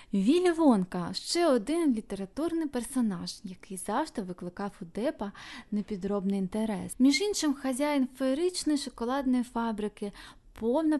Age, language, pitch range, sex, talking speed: 20-39, Ukrainian, 195-255 Hz, female, 115 wpm